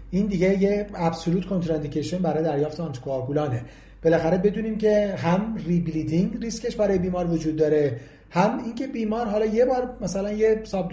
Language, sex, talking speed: Persian, male, 150 wpm